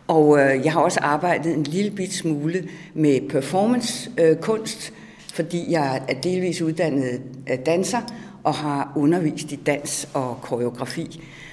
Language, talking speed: Danish, 130 wpm